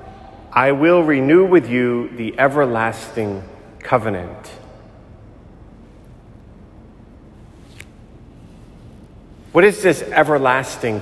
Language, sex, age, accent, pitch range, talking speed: English, male, 40-59, American, 115-160 Hz, 65 wpm